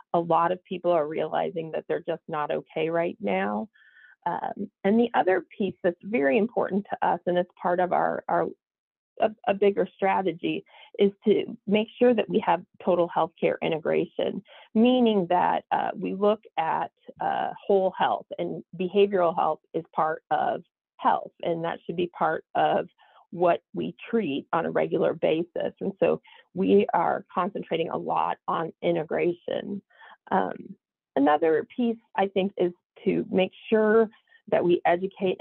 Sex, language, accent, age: female, English, American, 40-59